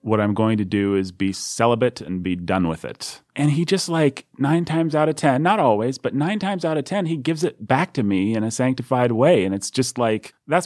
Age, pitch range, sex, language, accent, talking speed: 30-49, 100-130 Hz, male, English, American, 255 wpm